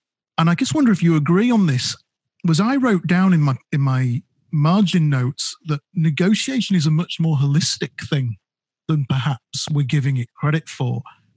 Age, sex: 40-59, male